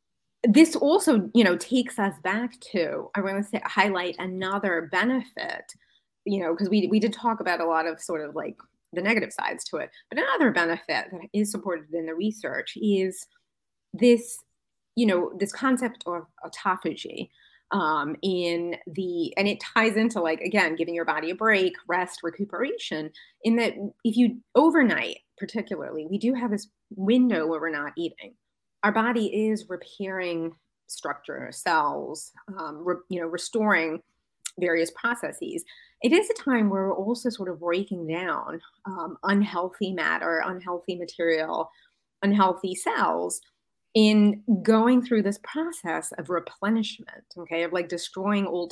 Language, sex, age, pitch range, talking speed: English, female, 30-49, 175-230 Hz, 155 wpm